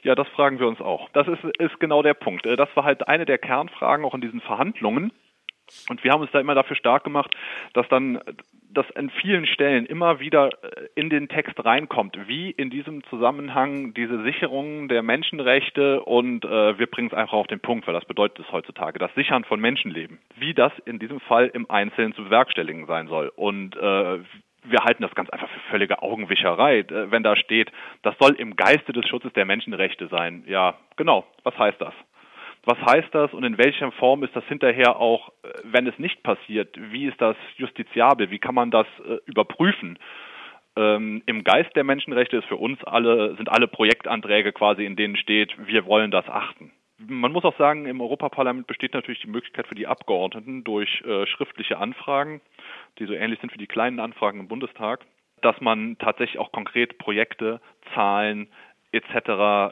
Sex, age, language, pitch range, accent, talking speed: male, 30-49, German, 110-145 Hz, German, 185 wpm